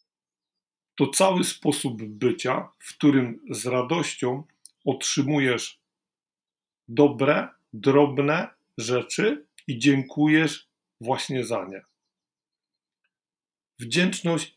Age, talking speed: 50-69, 75 wpm